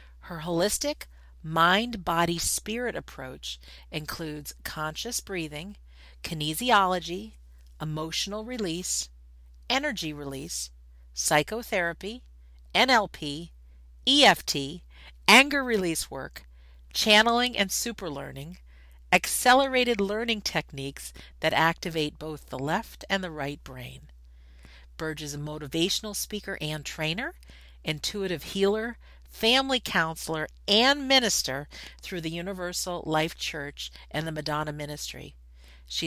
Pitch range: 135-190 Hz